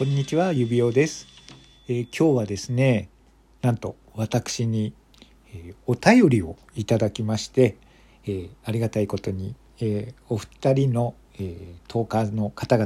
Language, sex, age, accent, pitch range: Japanese, male, 50-69, native, 110-140 Hz